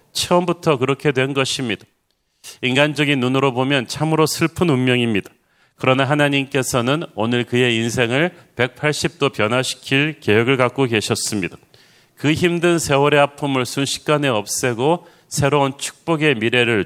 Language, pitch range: Korean, 120-145 Hz